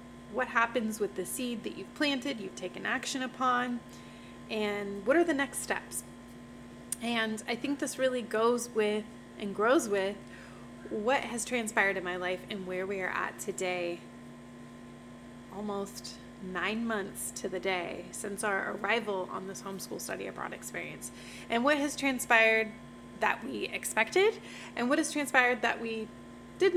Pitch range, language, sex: 195-245 Hz, English, female